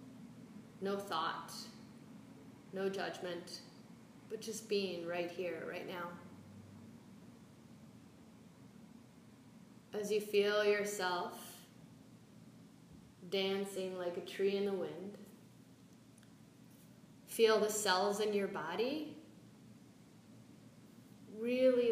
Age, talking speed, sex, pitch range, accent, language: 30-49, 80 wpm, female, 180-210 Hz, American, English